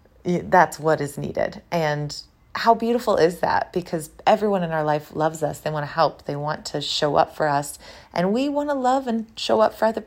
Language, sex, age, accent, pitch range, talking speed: English, female, 30-49, American, 150-185 Hz, 220 wpm